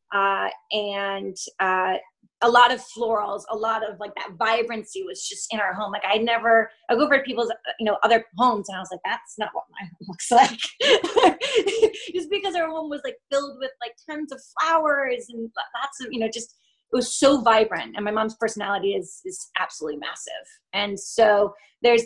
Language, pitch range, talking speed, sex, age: English, 200-235 Hz, 200 wpm, female, 30-49